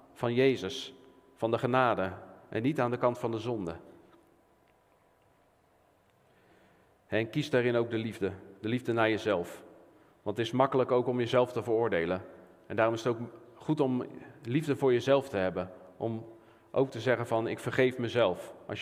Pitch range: 105-120 Hz